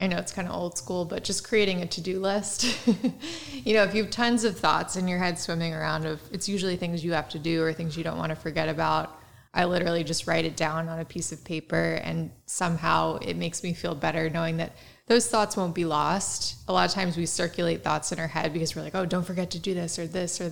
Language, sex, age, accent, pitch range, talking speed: English, female, 20-39, American, 165-190 Hz, 260 wpm